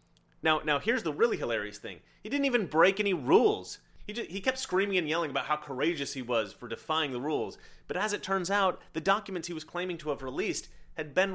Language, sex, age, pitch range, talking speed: English, male, 30-49, 130-180 Hz, 235 wpm